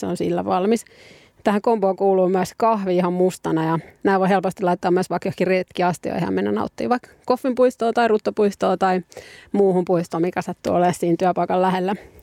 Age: 30-49